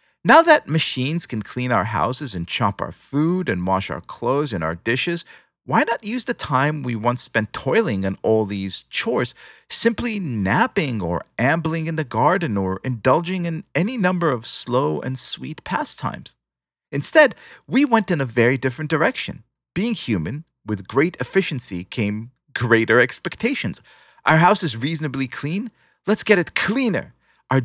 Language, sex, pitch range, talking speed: English, male, 115-180 Hz, 160 wpm